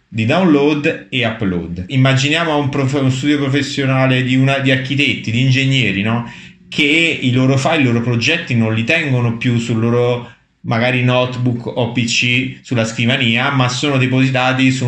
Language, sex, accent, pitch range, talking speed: Italian, male, native, 115-140 Hz, 160 wpm